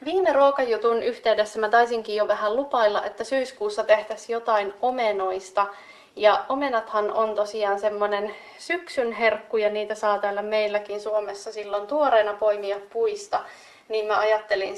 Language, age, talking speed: Finnish, 20-39, 135 wpm